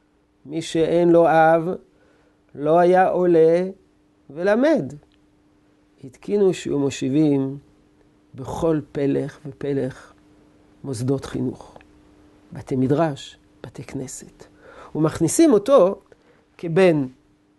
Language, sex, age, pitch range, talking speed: Hebrew, male, 50-69, 140-205 Hz, 80 wpm